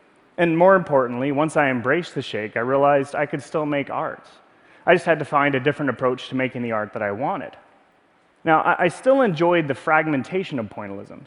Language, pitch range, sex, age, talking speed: English, 130-170 Hz, male, 30-49, 200 wpm